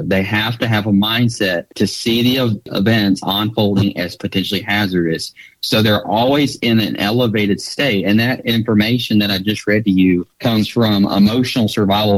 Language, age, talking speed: English, 30-49, 170 wpm